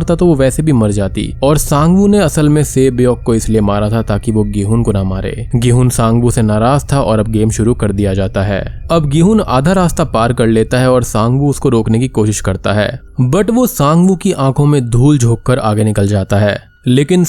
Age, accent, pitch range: 20-39, native, 110-145 Hz